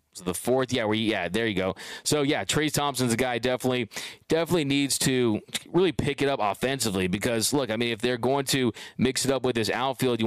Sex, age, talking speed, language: male, 20-39, 220 wpm, English